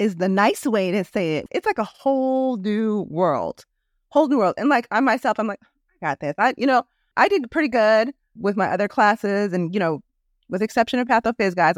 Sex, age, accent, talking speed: female, 30-49, American, 235 wpm